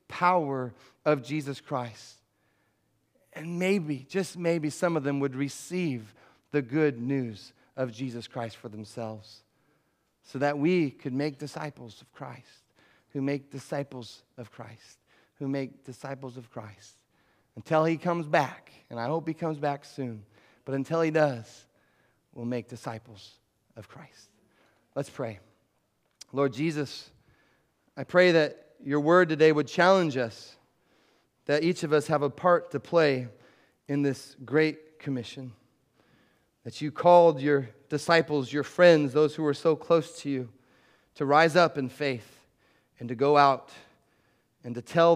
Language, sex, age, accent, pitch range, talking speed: English, male, 30-49, American, 120-150 Hz, 150 wpm